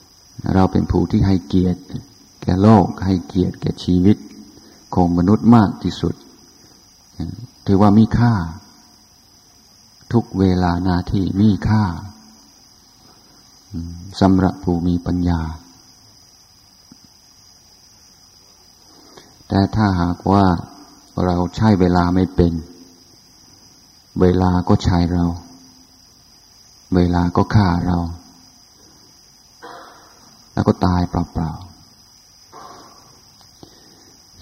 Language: Thai